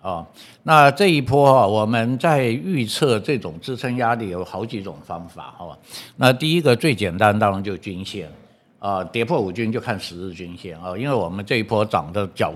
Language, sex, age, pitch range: Chinese, male, 60-79, 100-130 Hz